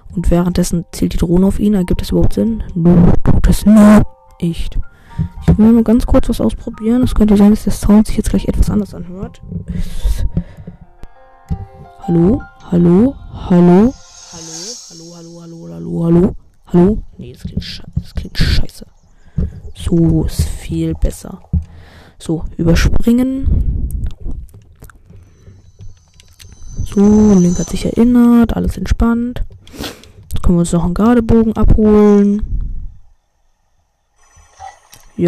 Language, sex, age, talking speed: German, female, 20-39, 120 wpm